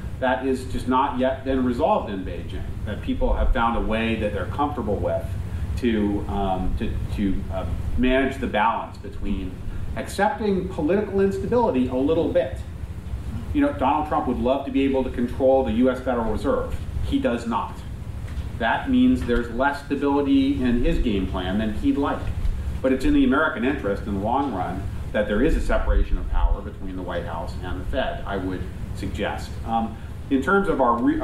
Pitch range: 95-130 Hz